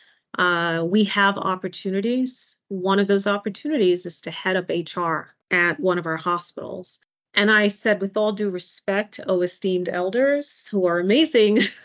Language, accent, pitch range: English, American, 175-215 Hz